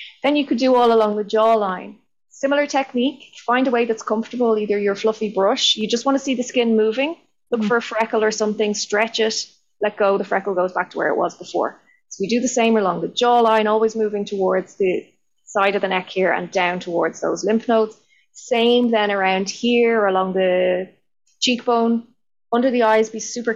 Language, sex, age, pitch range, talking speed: English, female, 20-39, 185-235 Hz, 205 wpm